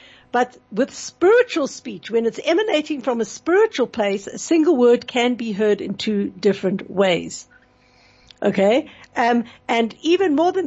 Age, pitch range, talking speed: 60-79, 210-265 Hz, 150 wpm